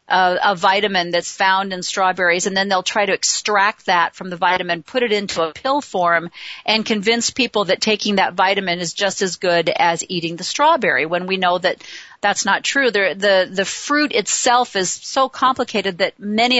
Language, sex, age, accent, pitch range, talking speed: English, female, 40-59, American, 185-240 Hz, 210 wpm